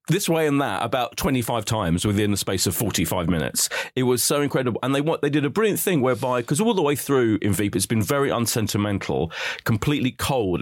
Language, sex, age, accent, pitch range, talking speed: English, male, 30-49, British, 105-140 Hz, 215 wpm